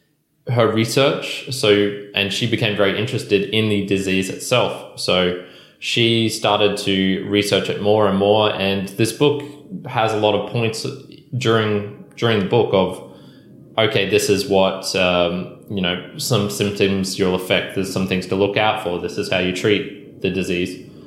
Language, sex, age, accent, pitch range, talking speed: English, male, 20-39, Australian, 100-115 Hz, 170 wpm